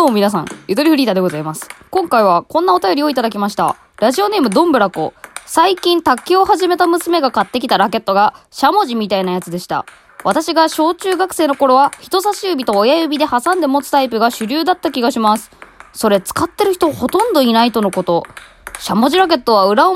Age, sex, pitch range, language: 20-39, female, 205-325 Hz, Japanese